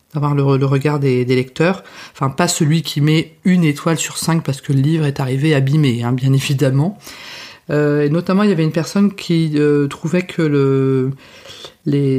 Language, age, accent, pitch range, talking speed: French, 40-59, French, 140-175 Hz, 195 wpm